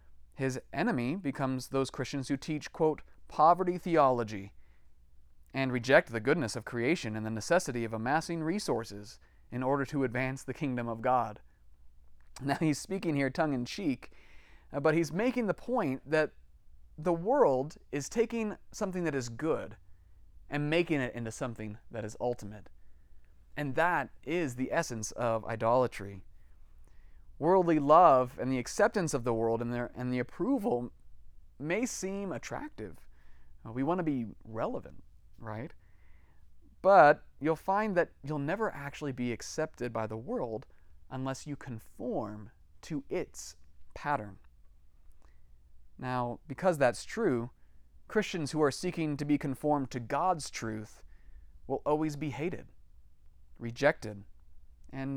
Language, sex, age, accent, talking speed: English, male, 30-49, American, 135 wpm